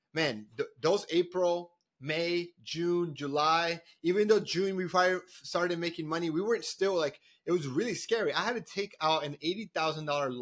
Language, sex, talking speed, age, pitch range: English, male, 160 wpm, 30-49, 145-180 Hz